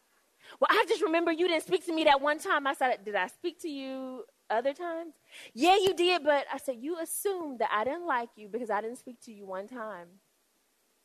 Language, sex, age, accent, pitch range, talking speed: English, female, 30-49, American, 195-280 Hz, 230 wpm